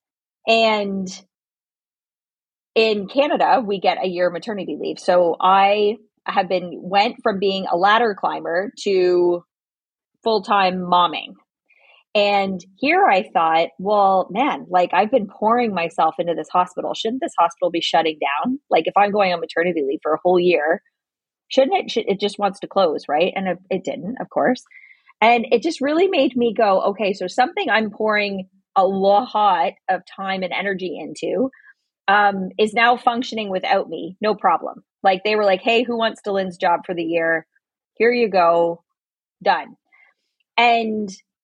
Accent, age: American, 30-49